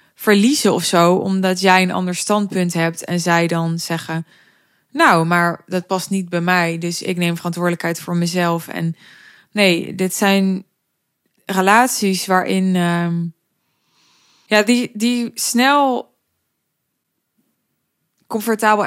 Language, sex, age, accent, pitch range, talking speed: Dutch, female, 20-39, Dutch, 175-215 Hz, 120 wpm